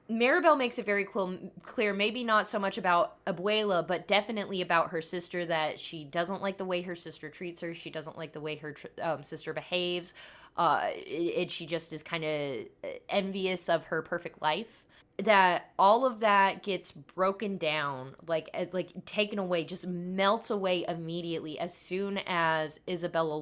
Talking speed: 170 wpm